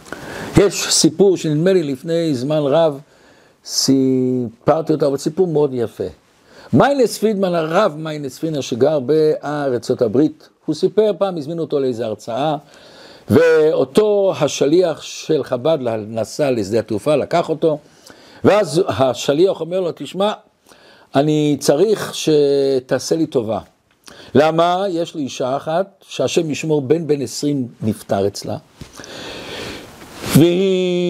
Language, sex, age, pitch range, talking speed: Hebrew, male, 60-79, 150-195 Hz, 115 wpm